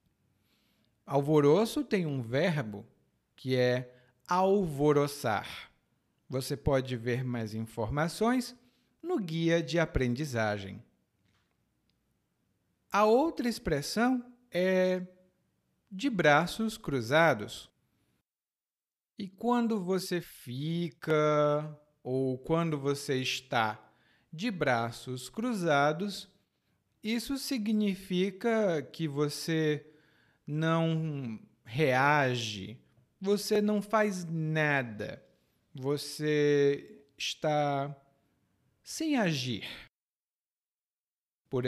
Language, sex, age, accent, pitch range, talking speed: Portuguese, male, 40-59, Brazilian, 130-200 Hz, 70 wpm